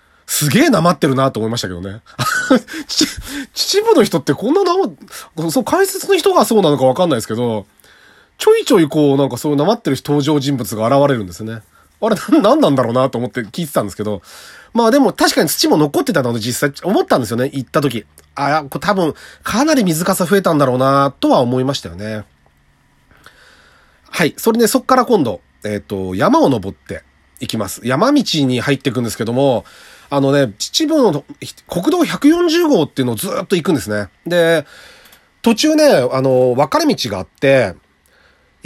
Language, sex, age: Japanese, male, 30-49